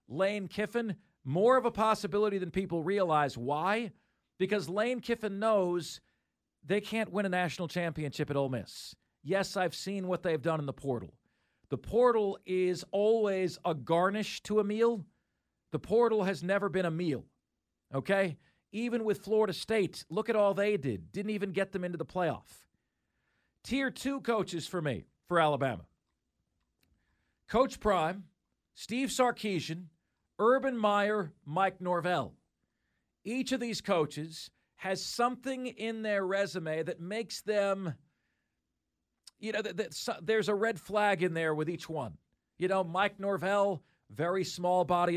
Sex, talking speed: male, 145 wpm